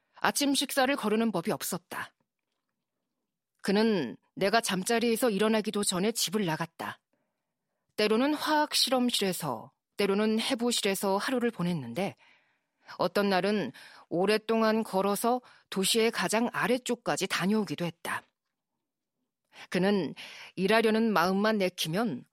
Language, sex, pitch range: Korean, female, 195-250 Hz